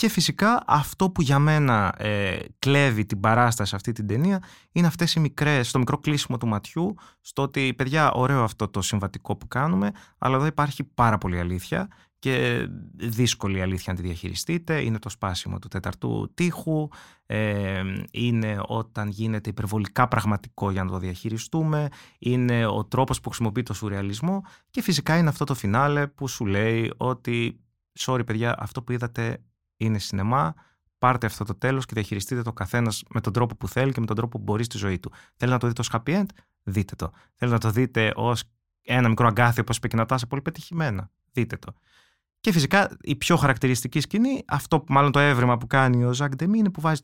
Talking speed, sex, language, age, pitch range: 190 wpm, male, Greek, 20-39, 105-145 Hz